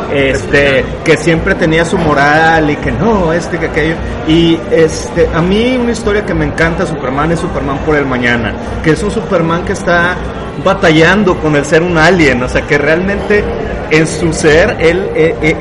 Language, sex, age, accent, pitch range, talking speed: Spanish, male, 30-49, Mexican, 150-185 Hz, 185 wpm